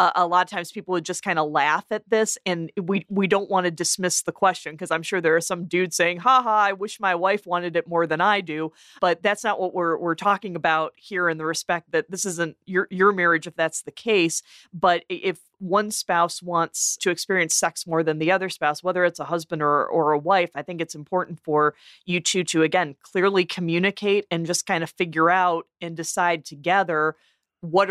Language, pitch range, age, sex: English, 165-185 Hz, 30-49, female